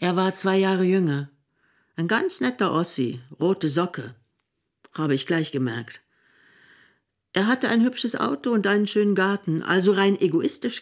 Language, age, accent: German, 50-69, German